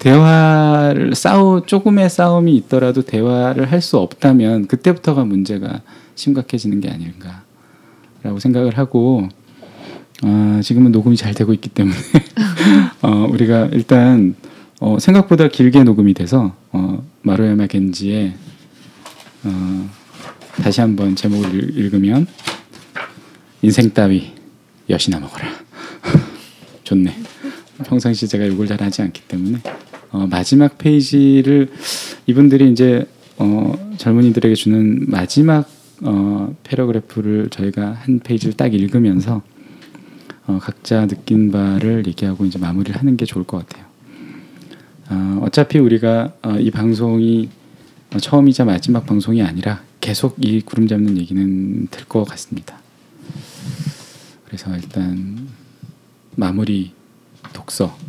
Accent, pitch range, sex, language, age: native, 100-135 Hz, male, Korean, 20-39